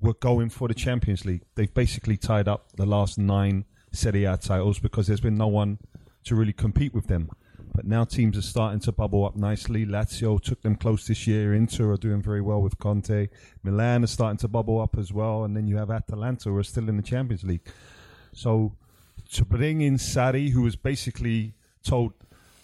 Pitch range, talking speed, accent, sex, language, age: 105-120 Hz, 205 wpm, British, male, English, 30-49